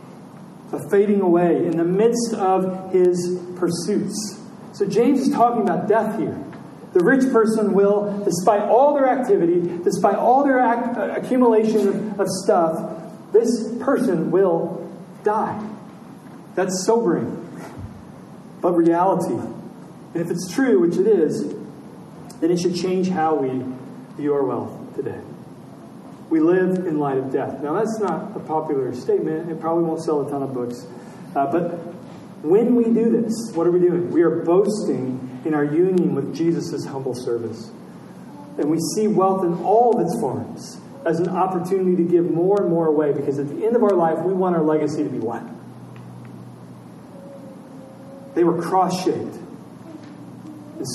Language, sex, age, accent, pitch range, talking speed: English, male, 40-59, American, 160-210 Hz, 155 wpm